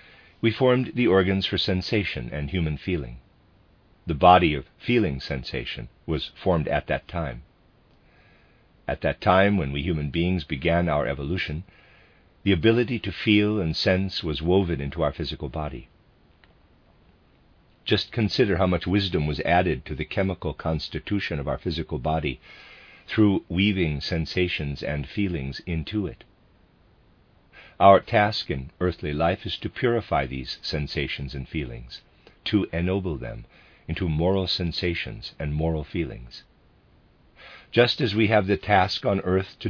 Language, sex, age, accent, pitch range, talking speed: English, male, 50-69, American, 80-100 Hz, 140 wpm